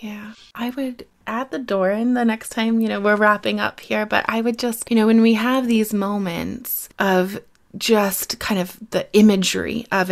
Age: 20-39